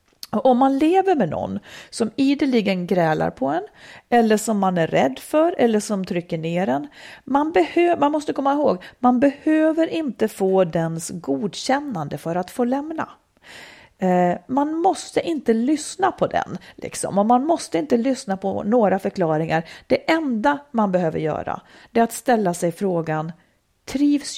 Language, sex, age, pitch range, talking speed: Swedish, female, 40-59, 190-300 Hz, 150 wpm